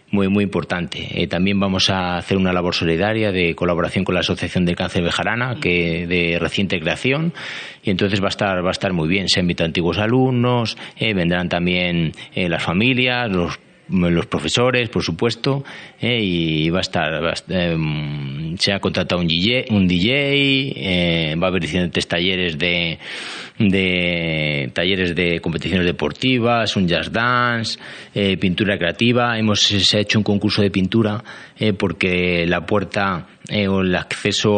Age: 30-49